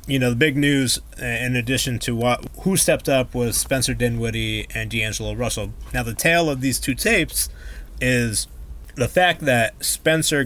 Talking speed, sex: 170 wpm, male